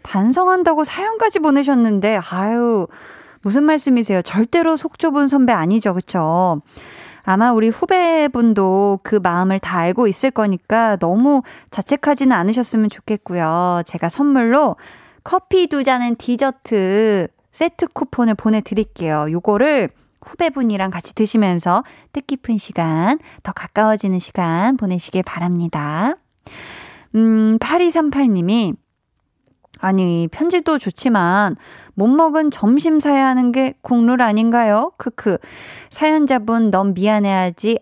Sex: female